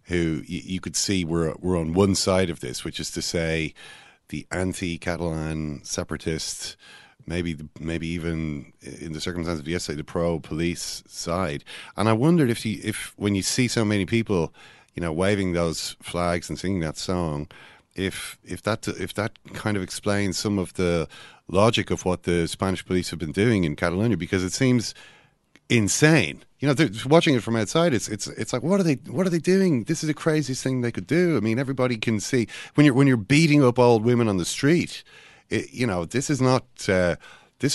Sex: male